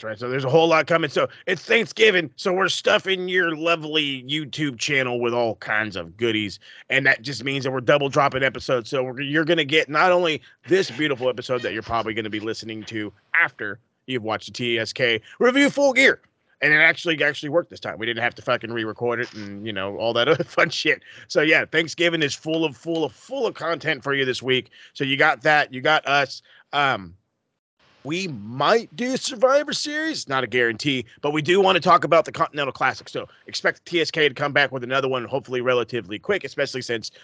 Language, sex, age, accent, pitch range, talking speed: English, male, 30-49, American, 125-170 Hz, 215 wpm